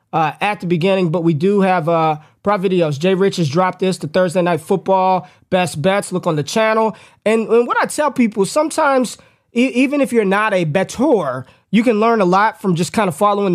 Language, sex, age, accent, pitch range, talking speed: English, male, 20-39, American, 170-205 Hz, 220 wpm